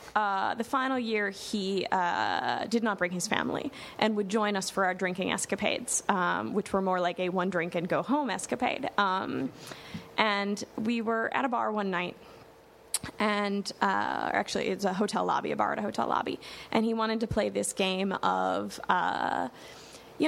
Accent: American